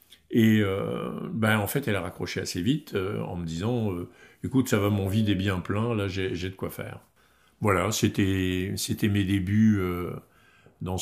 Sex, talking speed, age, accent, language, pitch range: male, 195 wpm, 50-69, French, French, 90-110 Hz